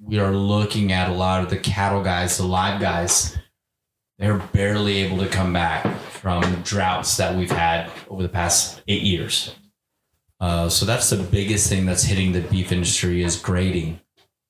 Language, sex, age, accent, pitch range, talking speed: English, male, 20-39, American, 90-105 Hz, 175 wpm